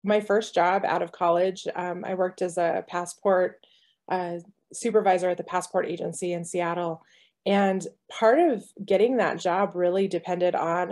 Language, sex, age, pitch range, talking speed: English, female, 20-39, 180-205 Hz, 160 wpm